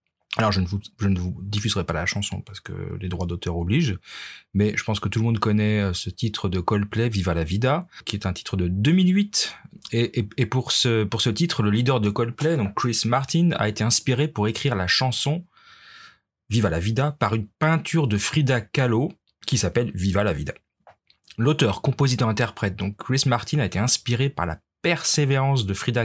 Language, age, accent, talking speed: French, 30-49, French, 205 wpm